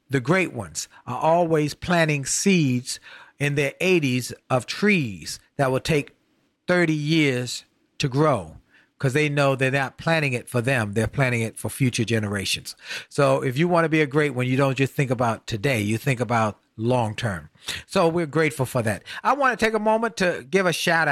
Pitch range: 130-165 Hz